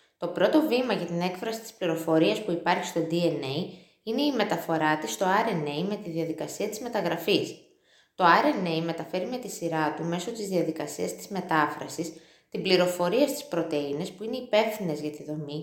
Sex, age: female, 20-39